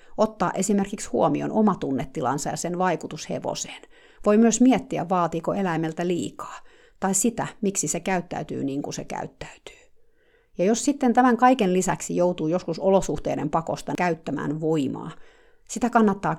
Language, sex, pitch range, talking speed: Finnish, female, 160-225 Hz, 140 wpm